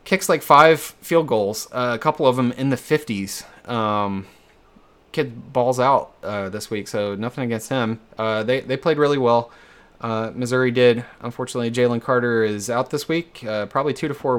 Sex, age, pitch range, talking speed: male, 20-39, 105-125 Hz, 190 wpm